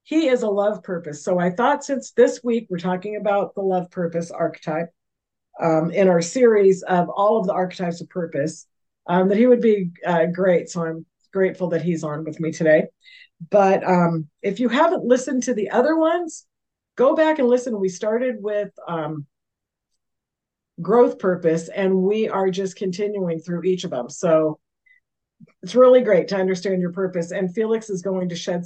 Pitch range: 170-225 Hz